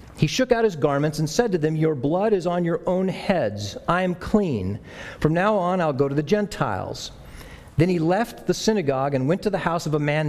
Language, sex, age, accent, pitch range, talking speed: English, male, 50-69, American, 130-180 Hz, 235 wpm